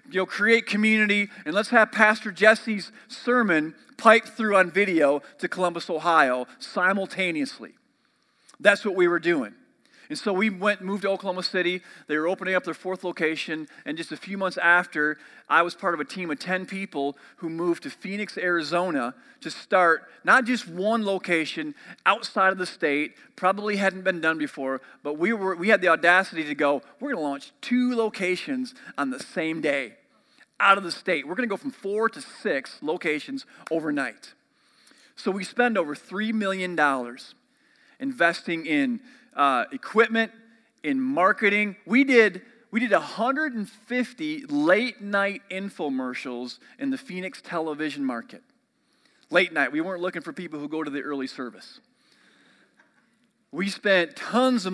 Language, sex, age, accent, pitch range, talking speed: English, male, 40-59, American, 170-230 Hz, 160 wpm